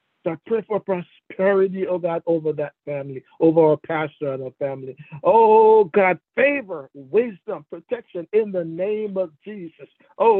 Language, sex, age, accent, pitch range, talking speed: English, male, 60-79, American, 155-215 Hz, 150 wpm